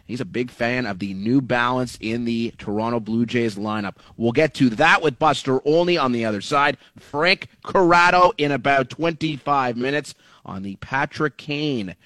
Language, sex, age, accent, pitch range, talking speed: English, male, 30-49, American, 110-150 Hz, 175 wpm